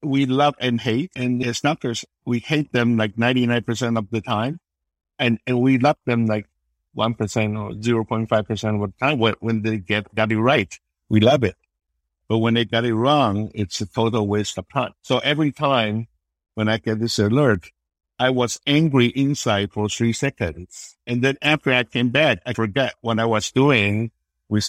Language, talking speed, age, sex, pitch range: English, 185 wpm, 60-79, male, 105-135 Hz